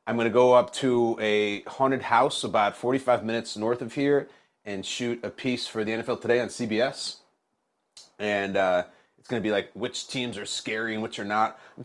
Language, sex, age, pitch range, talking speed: English, male, 30-49, 110-150 Hz, 210 wpm